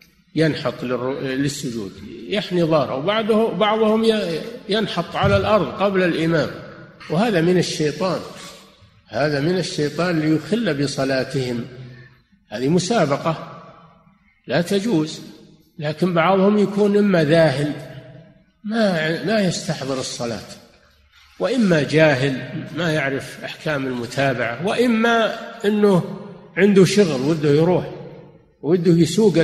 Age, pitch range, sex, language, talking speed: 50-69, 150-200 Hz, male, Arabic, 95 wpm